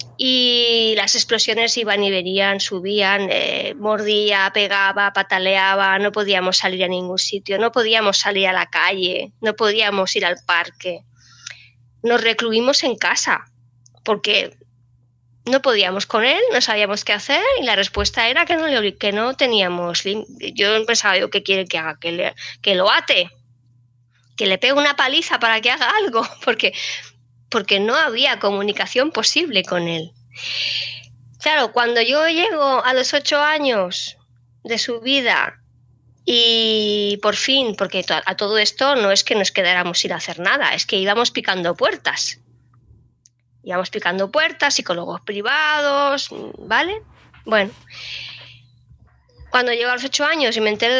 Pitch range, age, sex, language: 175-235 Hz, 20-39, female, Spanish